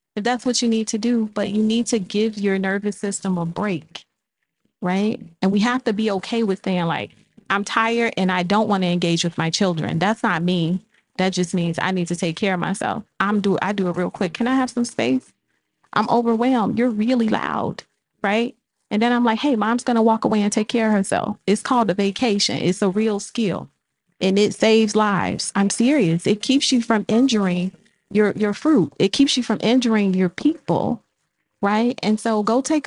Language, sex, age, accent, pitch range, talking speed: English, female, 30-49, American, 185-230 Hz, 210 wpm